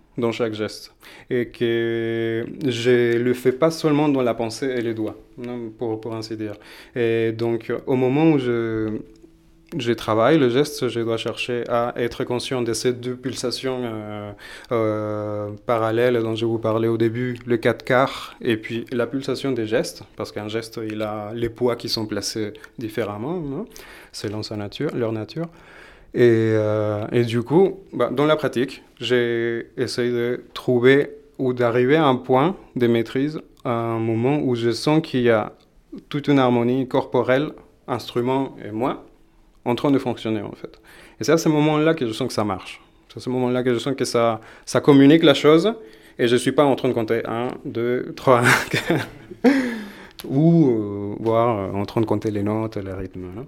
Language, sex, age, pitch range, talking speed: French, male, 30-49, 115-135 Hz, 190 wpm